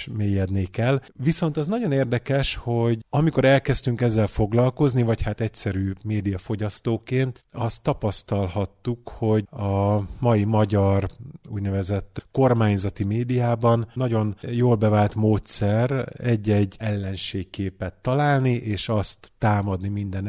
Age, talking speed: 30-49, 105 wpm